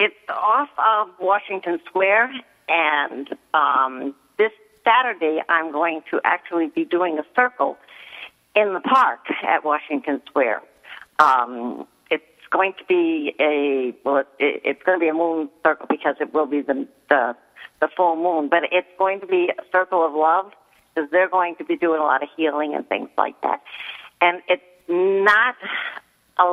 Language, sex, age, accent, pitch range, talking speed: English, female, 50-69, American, 155-190 Hz, 165 wpm